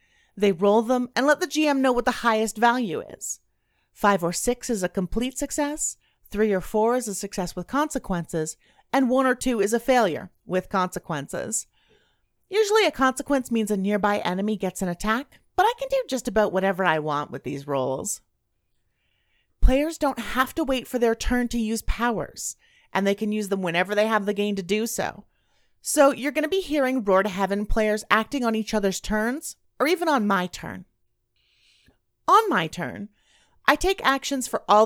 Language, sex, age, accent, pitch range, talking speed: English, female, 30-49, American, 195-270 Hz, 190 wpm